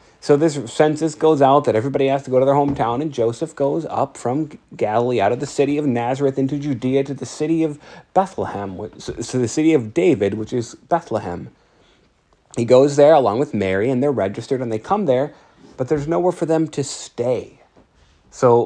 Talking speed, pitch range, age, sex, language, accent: 195 wpm, 110-145 Hz, 30-49, male, English, American